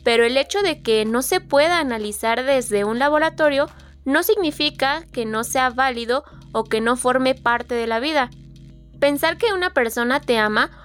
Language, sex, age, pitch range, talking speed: Spanish, female, 20-39, 215-290 Hz, 175 wpm